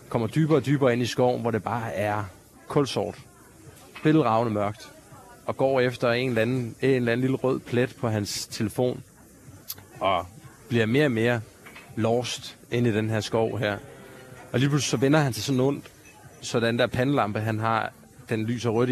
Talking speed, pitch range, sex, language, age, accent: 185 wpm, 110-135 Hz, male, Danish, 30-49, native